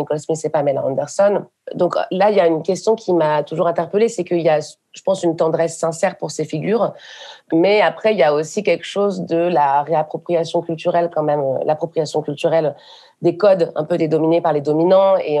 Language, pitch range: French, 150-180 Hz